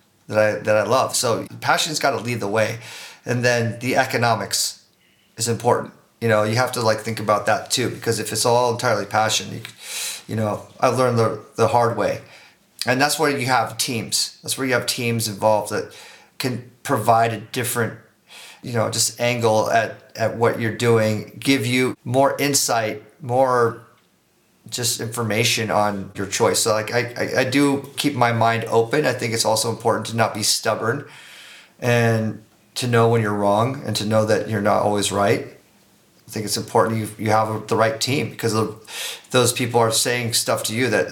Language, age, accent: English, 30-49, American